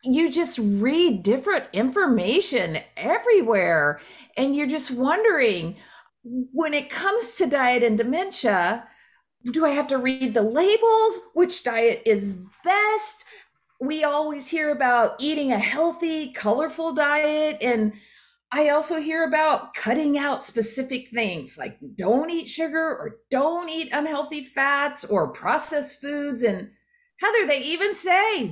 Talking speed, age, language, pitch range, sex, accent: 135 wpm, 40-59, English, 230-325 Hz, female, American